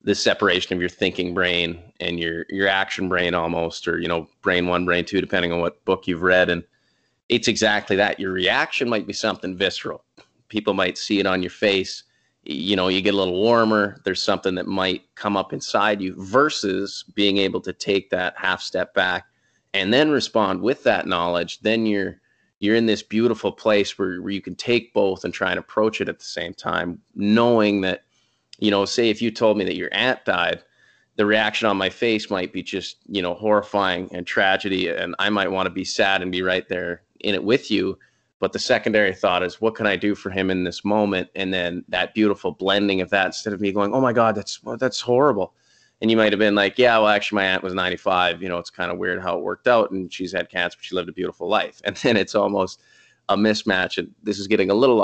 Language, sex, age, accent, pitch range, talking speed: English, male, 30-49, American, 90-105 Hz, 230 wpm